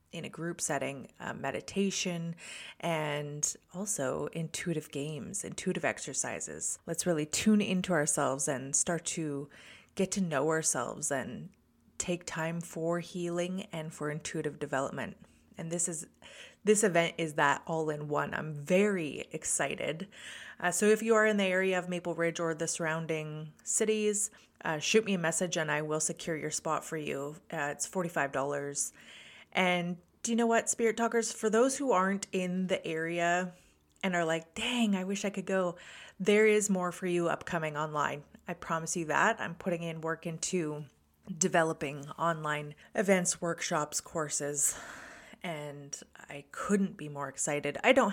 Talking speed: 155 wpm